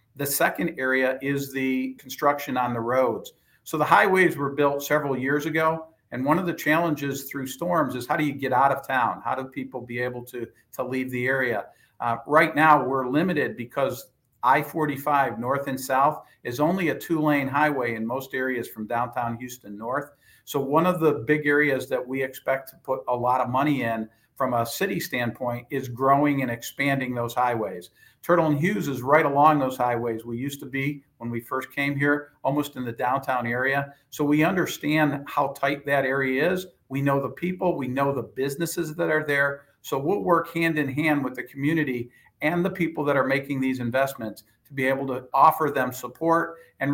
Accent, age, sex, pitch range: American, 50-69, male, 125-150 Hz